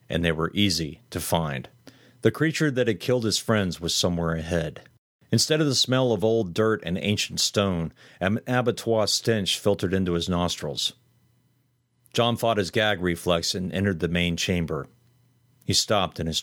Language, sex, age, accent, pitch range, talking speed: English, male, 40-59, American, 90-120 Hz, 170 wpm